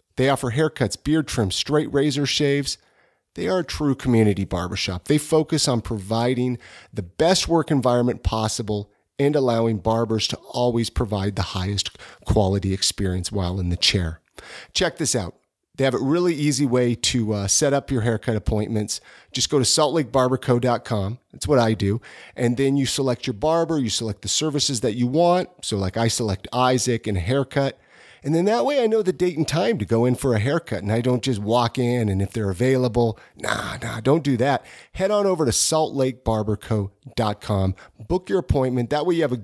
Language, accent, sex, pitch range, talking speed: English, American, male, 105-150 Hz, 190 wpm